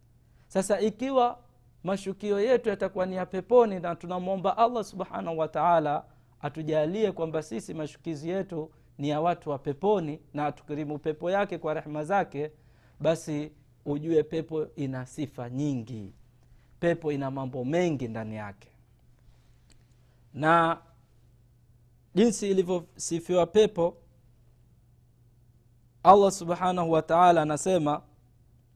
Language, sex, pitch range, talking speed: Swahili, male, 120-170 Hz, 110 wpm